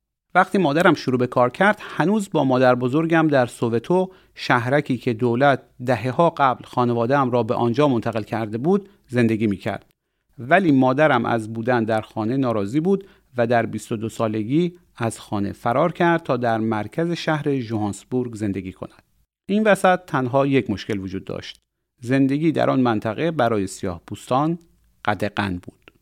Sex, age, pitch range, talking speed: male, 40-59, 115-155 Hz, 150 wpm